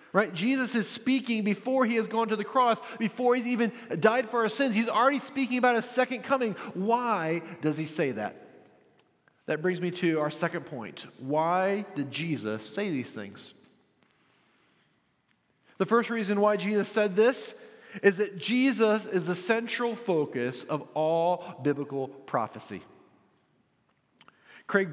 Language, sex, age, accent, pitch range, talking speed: English, male, 30-49, American, 155-230 Hz, 150 wpm